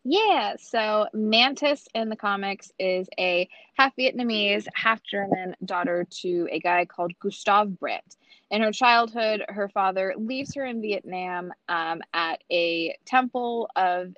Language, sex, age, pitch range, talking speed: English, female, 20-39, 175-220 Hz, 140 wpm